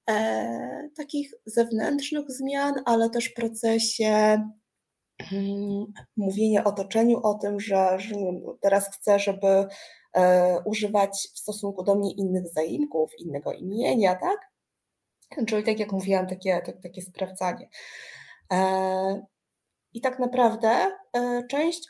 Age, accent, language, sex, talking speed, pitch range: 20-39, native, Polish, female, 125 wpm, 185-230 Hz